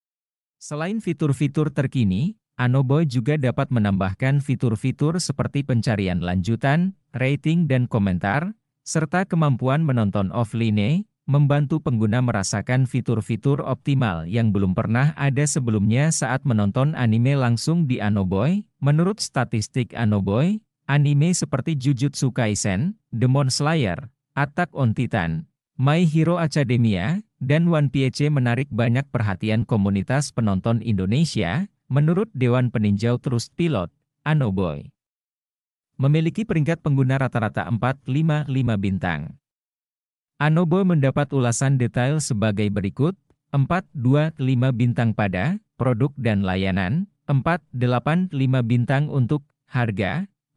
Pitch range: 115-150 Hz